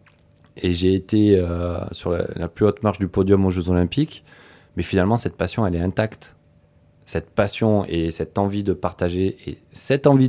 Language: French